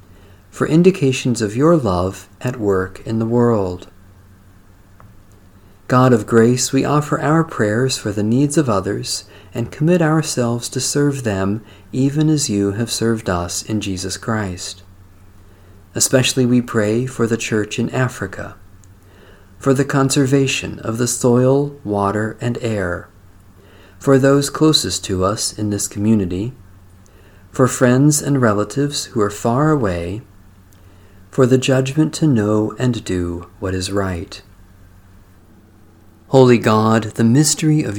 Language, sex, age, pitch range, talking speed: English, male, 40-59, 95-130 Hz, 135 wpm